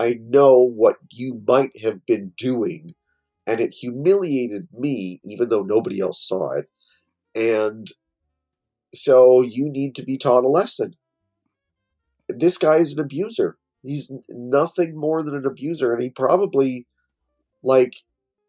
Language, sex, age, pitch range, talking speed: English, male, 40-59, 110-150 Hz, 135 wpm